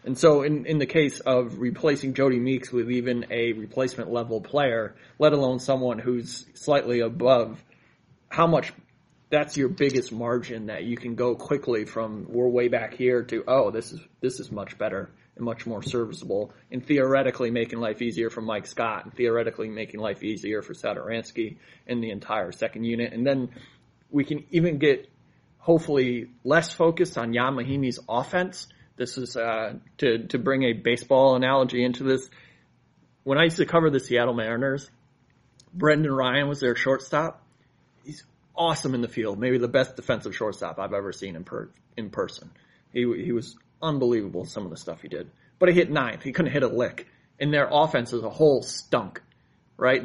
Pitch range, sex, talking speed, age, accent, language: 120-140 Hz, male, 180 wpm, 30-49, American, English